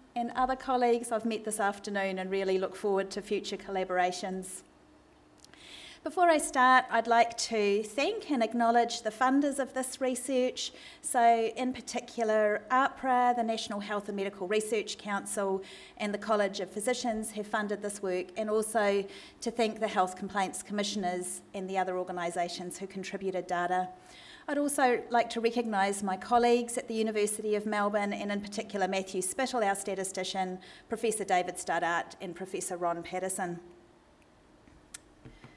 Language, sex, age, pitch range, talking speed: English, female, 40-59, 195-245 Hz, 150 wpm